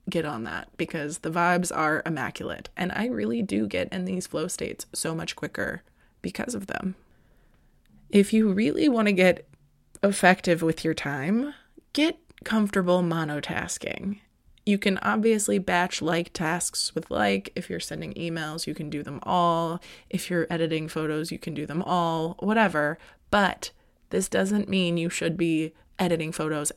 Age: 20-39